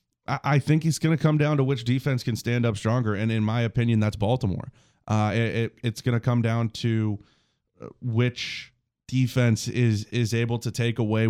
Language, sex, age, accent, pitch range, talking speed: English, male, 20-39, American, 110-125 Hz, 190 wpm